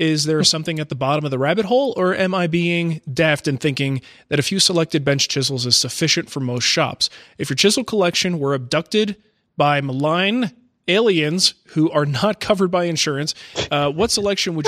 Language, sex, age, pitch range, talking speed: English, male, 20-39, 135-175 Hz, 190 wpm